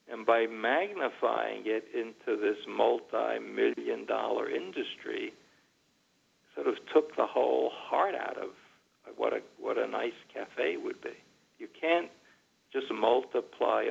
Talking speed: 125 wpm